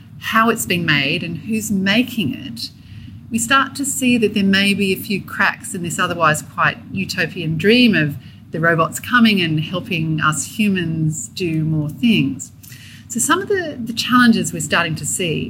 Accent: Australian